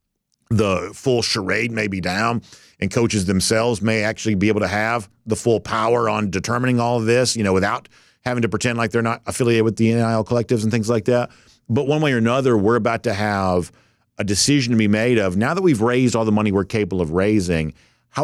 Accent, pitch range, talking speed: American, 95-125 Hz, 225 wpm